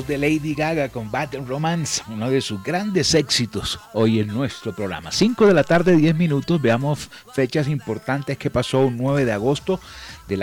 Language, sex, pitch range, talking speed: Spanish, male, 105-145 Hz, 180 wpm